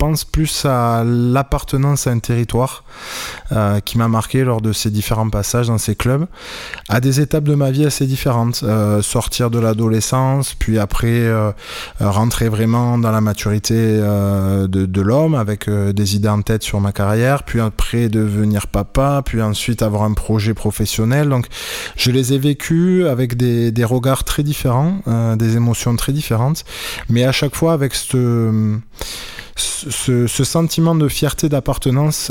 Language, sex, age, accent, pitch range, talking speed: French, male, 20-39, French, 105-130 Hz, 165 wpm